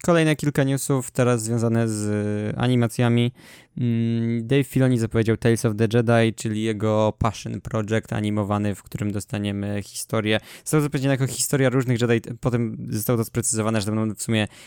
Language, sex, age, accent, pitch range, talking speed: Polish, male, 20-39, native, 110-130 Hz, 170 wpm